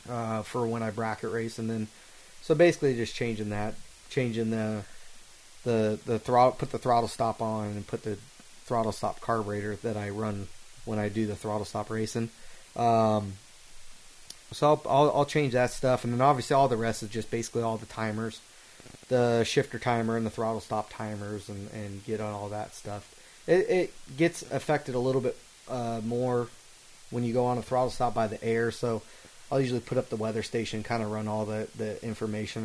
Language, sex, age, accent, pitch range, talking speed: English, male, 30-49, American, 110-130 Hz, 200 wpm